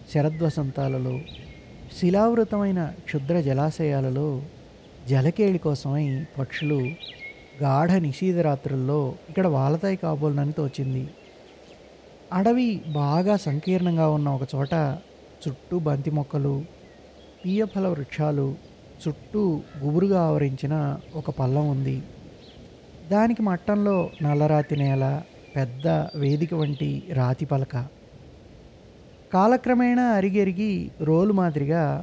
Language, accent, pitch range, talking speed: Telugu, native, 140-180 Hz, 85 wpm